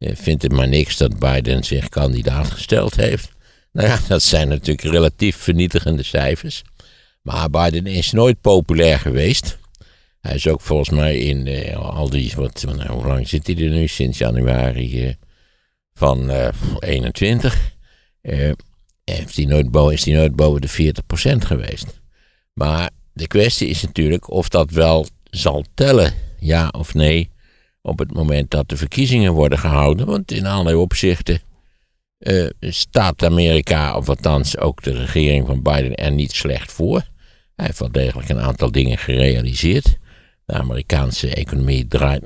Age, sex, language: 60-79, male, Dutch